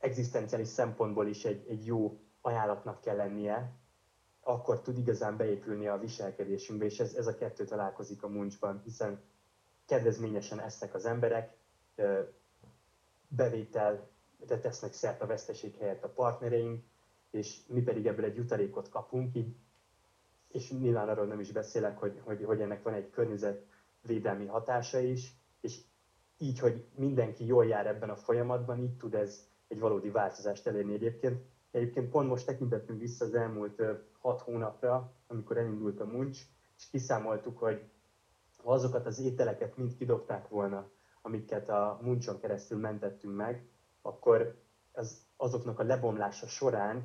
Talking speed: 145 wpm